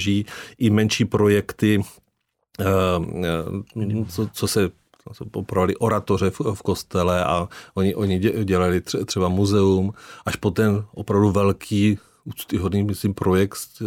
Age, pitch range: 40-59, 95-105 Hz